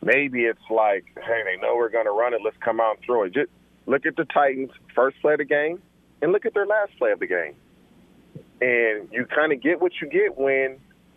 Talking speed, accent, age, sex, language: 240 wpm, American, 40-59, male, English